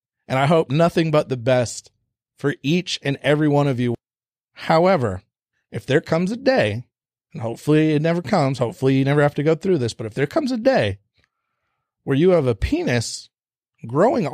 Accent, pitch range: American, 120-155 Hz